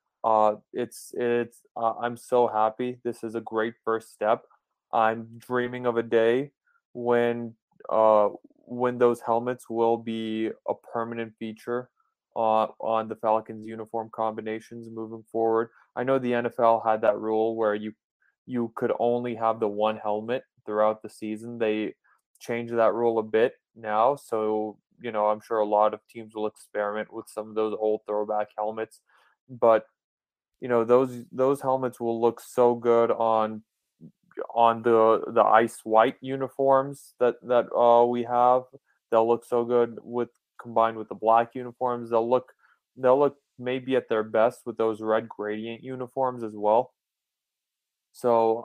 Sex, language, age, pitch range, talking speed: male, English, 20-39, 110-120 Hz, 160 wpm